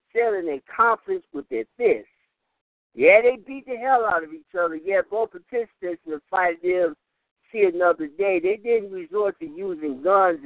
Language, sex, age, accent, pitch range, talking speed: English, male, 60-79, American, 165-245 Hz, 170 wpm